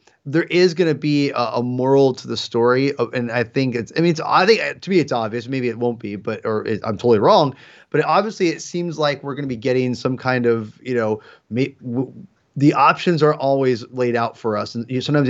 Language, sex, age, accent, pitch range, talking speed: English, male, 30-49, American, 120-145 Hz, 230 wpm